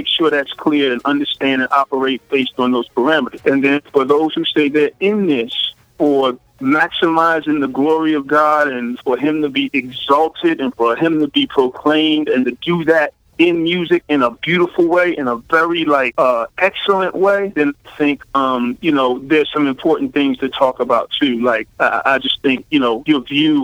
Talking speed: 200 wpm